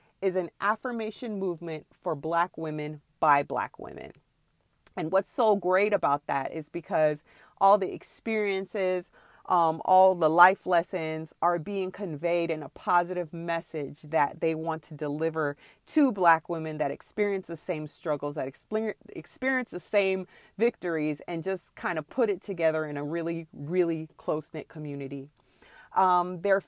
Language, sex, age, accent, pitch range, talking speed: English, female, 30-49, American, 155-200 Hz, 150 wpm